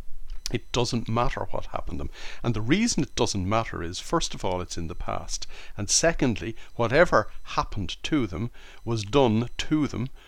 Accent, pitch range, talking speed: Irish, 95-125 Hz, 180 wpm